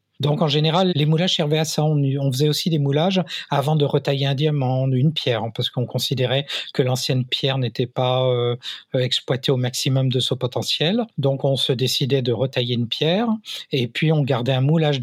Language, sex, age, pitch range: French, male, 50-69, 125-150 Hz